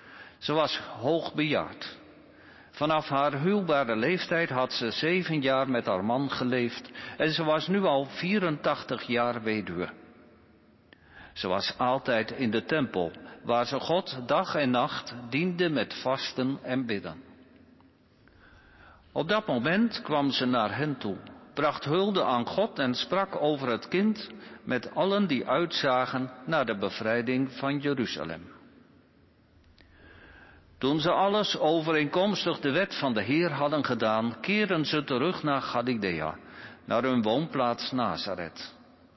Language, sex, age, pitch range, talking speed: Dutch, male, 50-69, 120-160 Hz, 130 wpm